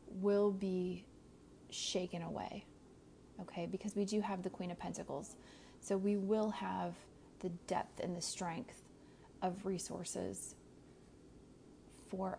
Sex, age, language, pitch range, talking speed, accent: female, 30-49, English, 180-205 Hz, 120 wpm, American